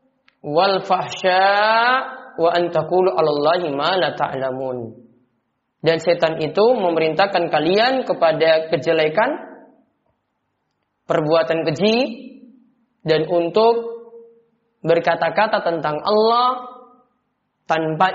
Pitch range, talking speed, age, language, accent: 160-225 Hz, 55 wpm, 20-39, Indonesian, native